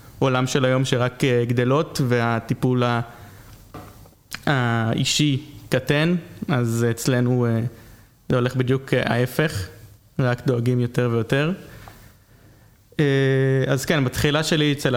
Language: Hebrew